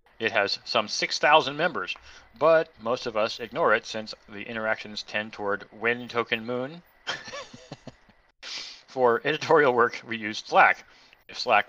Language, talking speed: English, 140 wpm